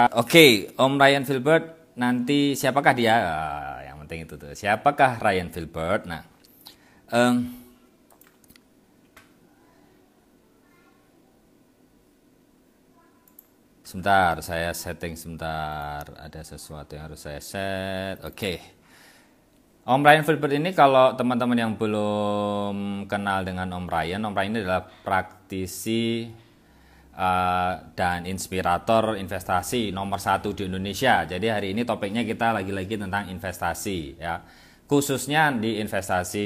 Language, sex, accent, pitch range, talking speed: Indonesian, male, native, 90-125 Hz, 110 wpm